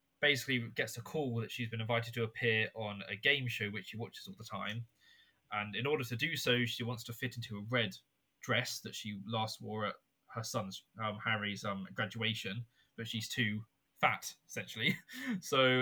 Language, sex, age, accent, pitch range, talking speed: English, male, 20-39, British, 105-125 Hz, 195 wpm